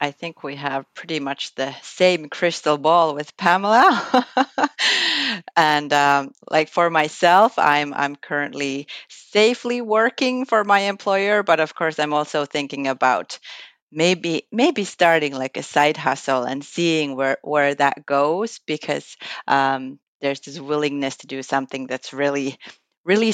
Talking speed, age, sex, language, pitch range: 145 wpm, 30-49, female, Finnish, 140-190 Hz